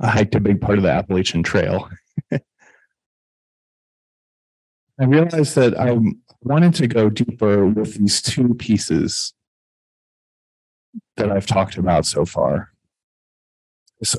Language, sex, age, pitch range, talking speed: English, male, 40-59, 100-125 Hz, 120 wpm